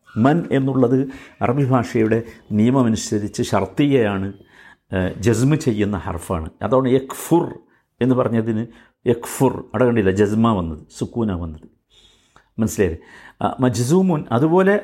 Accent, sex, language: native, male, Malayalam